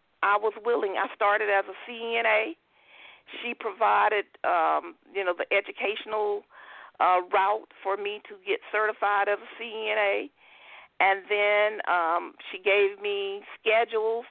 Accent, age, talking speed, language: American, 50-69, 135 wpm, English